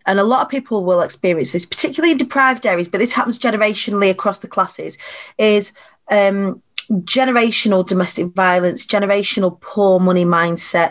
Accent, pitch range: British, 185-230 Hz